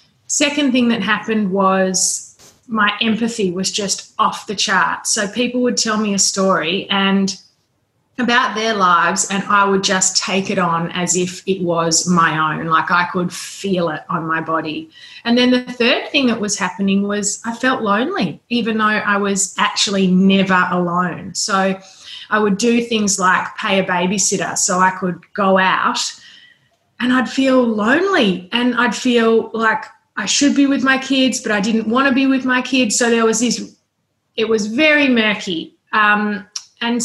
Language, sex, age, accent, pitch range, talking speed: English, female, 20-39, Australian, 180-230 Hz, 180 wpm